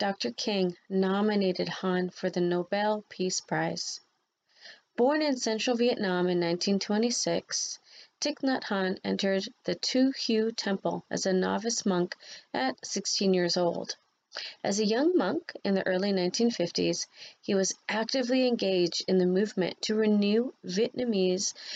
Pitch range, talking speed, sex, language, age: 185-235 Hz, 135 wpm, female, English, 30-49